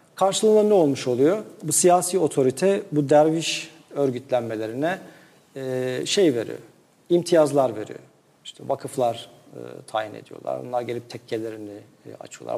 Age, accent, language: 40-59, native, Turkish